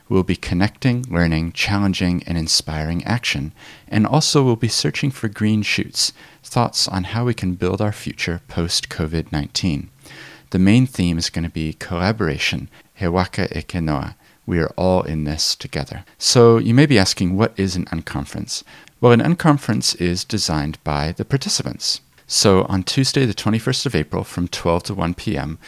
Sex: male